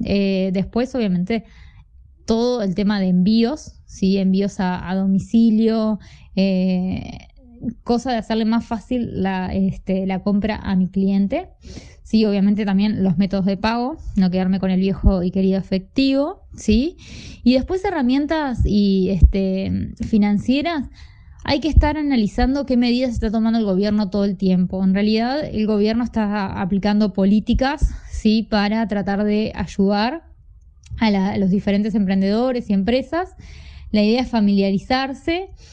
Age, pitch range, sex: 20-39, 195-240 Hz, female